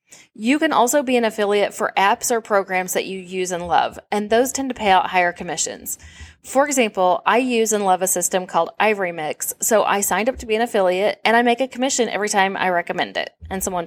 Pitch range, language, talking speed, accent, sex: 185-240 Hz, English, 235 wpm, American, female